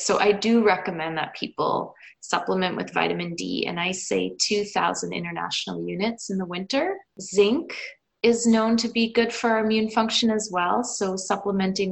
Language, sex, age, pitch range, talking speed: English, female, 20-39, 175-220 Hz, 160 wpm